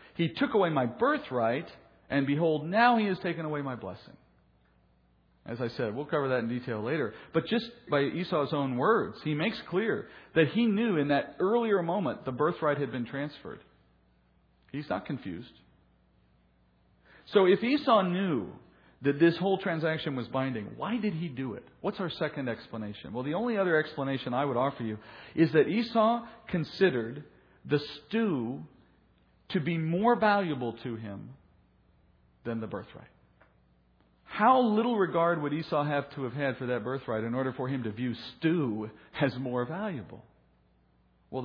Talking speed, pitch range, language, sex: 165 wpm, 115-170 Hz, English, male